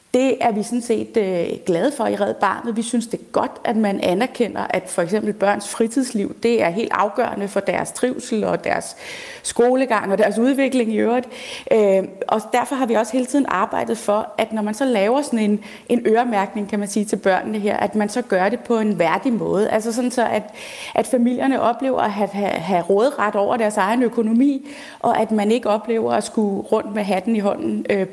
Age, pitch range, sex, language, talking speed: 30-49, 200-235 Hz, female, Danish, 215 wpm